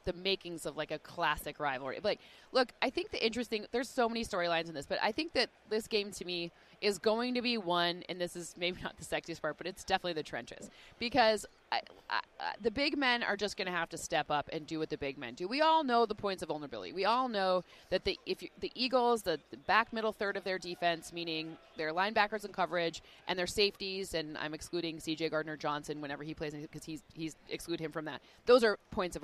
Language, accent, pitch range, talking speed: English, American, 165-225 Hz, 240 wpm